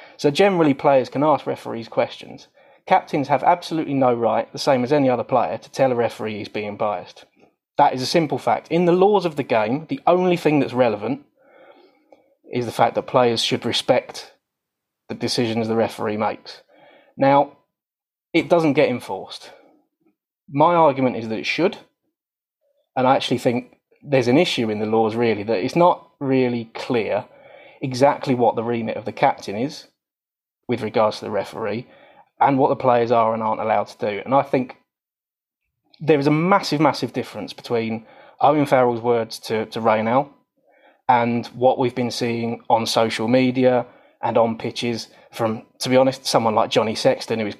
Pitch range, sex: 115-145 Hz, male